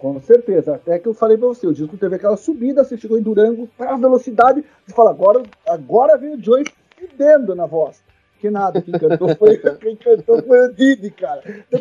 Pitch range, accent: 180-270 Hz, Brazilian